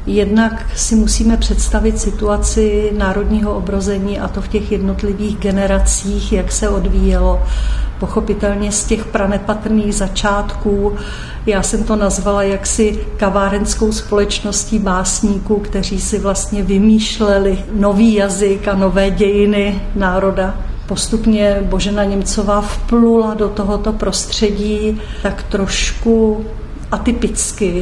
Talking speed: 105 wpm